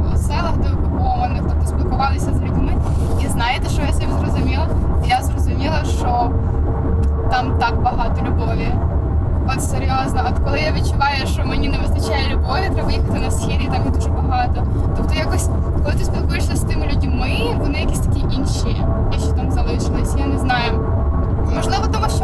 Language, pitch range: Ukrainian, 85-95 Hz